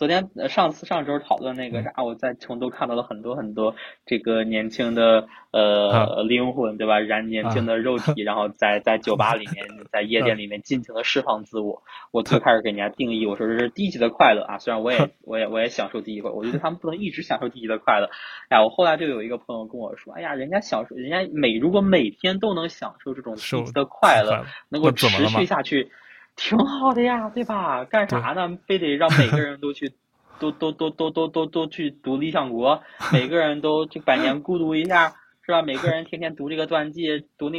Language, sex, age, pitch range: Chinese, male, 20-39, 120-165 Hz